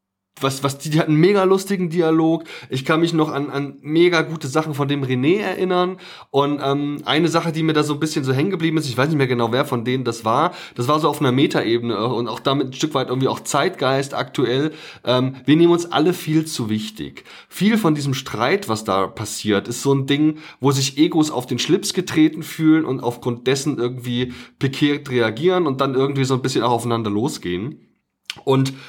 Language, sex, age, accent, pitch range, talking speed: German, male, 20-39, German, 120-155 Hz, 220 wpm